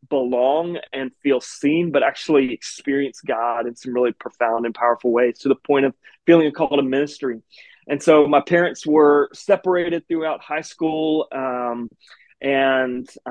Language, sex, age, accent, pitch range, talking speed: English, male, 20-39, American, 130-160 Hz, 160 wpm